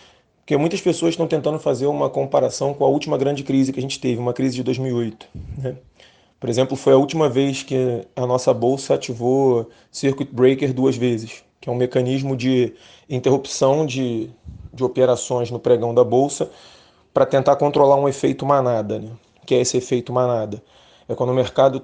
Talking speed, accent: 180 wpm, Brazilian